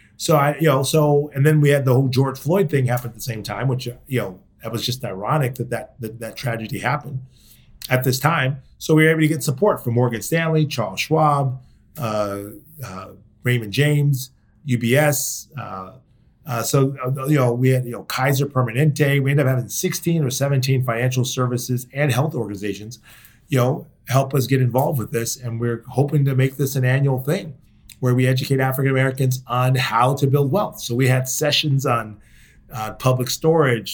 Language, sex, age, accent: English, male, 30-49, American